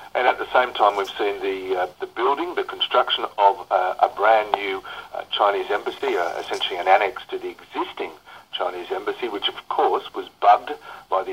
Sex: male